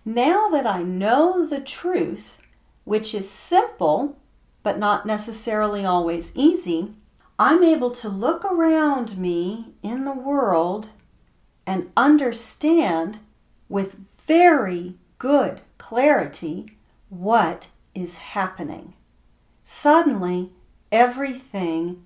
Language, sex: English, female